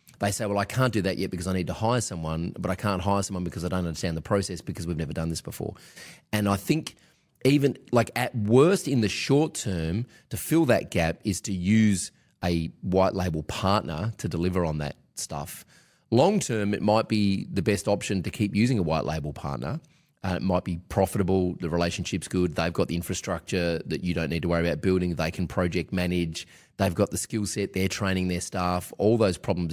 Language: English